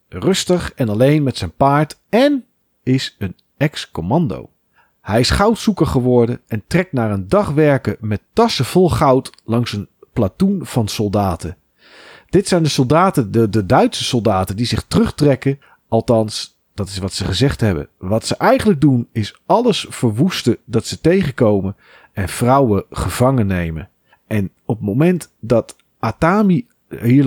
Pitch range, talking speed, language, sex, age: 105-155 Hz, 150 wpm, Dutch, male, 40-59